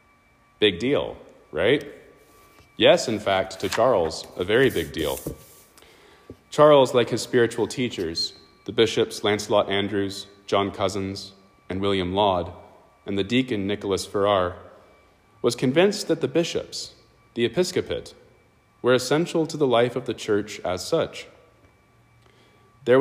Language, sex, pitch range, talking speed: English, male, 95-120 Hz, 130 wpm